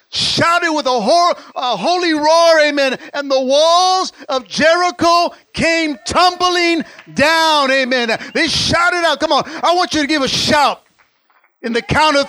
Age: 50-69